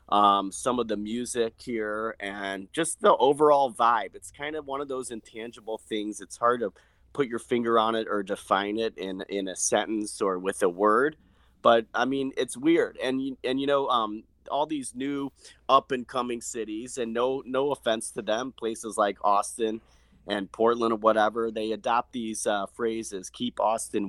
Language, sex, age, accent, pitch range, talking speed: English, male, 30-49, American, 110-130 Hz, 180 wpm